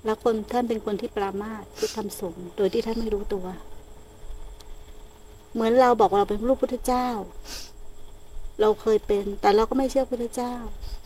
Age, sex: 60-79, female